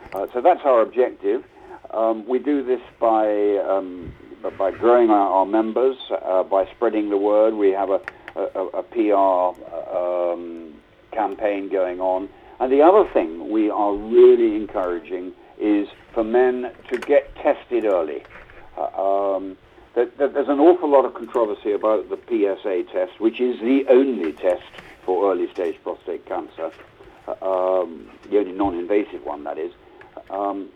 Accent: British